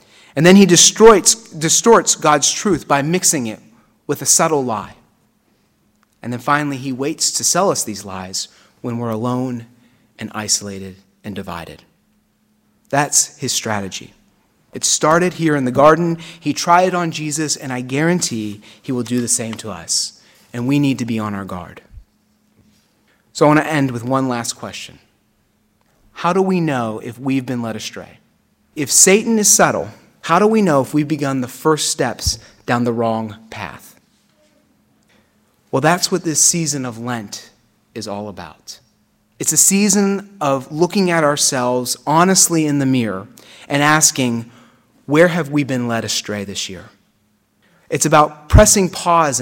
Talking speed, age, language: 160 wpm, 30-49, English